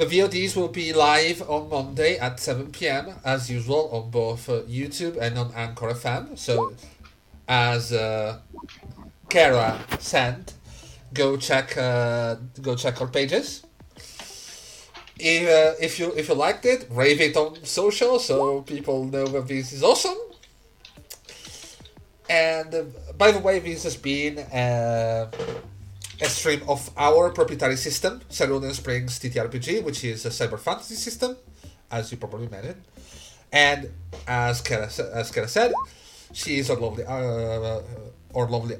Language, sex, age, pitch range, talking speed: English, male, 30-49, 110-160 Hz, 140 wpm